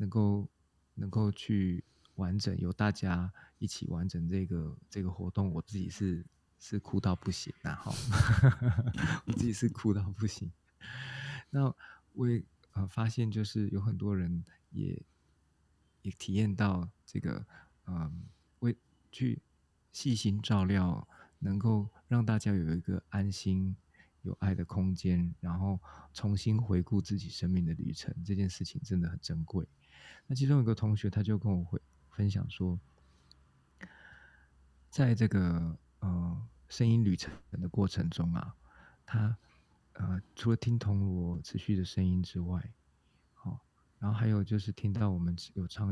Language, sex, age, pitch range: Chinese, male, 20-39, 85-110 Hz